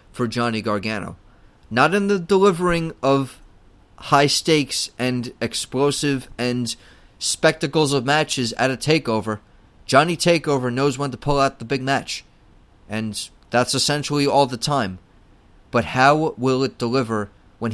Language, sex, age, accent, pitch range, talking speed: English, male, 30-49, American, 110-145 Hz, 140 wpm